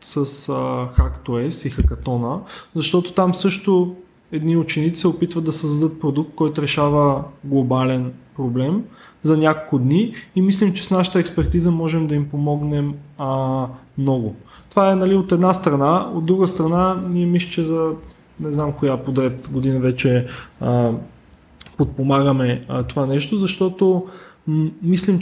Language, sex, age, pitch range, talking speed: Bulgarian, male, 20-39, 140-165 Hz, 145 wpm